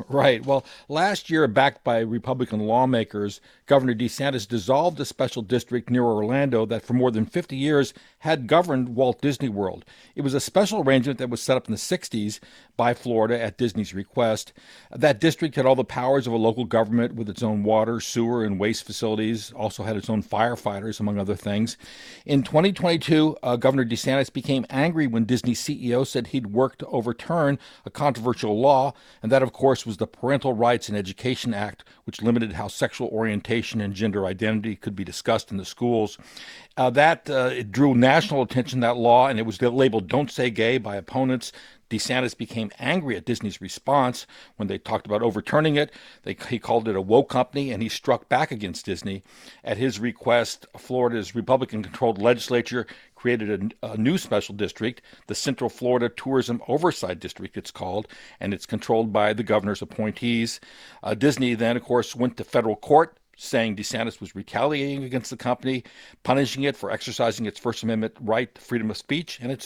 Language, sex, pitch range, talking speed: English, male, 110-130 Hz, 185 wpm